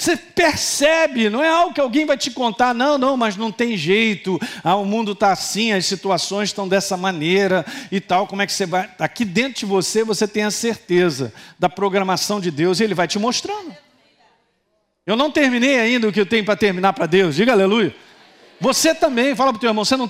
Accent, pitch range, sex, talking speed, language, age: Brazilian, 200-290 Hz, male, 220 wpm, Portuguese, 50-69